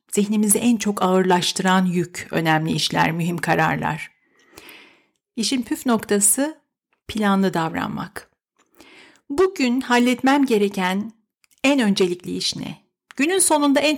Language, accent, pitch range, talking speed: Turkish, native, 195-260 Hz, 105 wpm